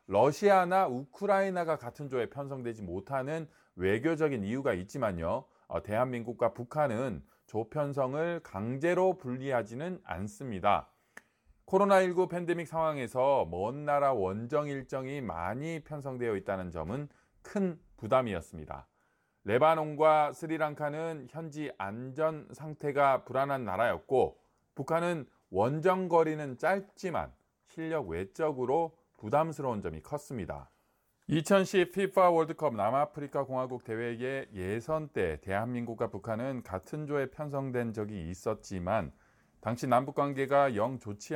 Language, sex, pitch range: Korean, male, 120-160 Hz